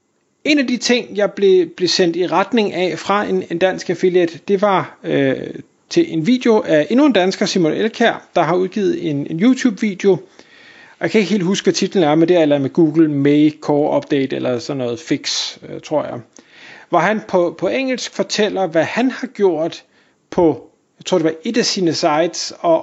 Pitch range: 160-205 Hz